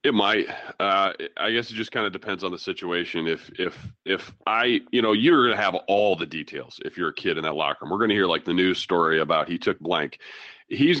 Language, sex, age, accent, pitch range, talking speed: English, male, 30-49, American, 85-95 Hz, 255 wpm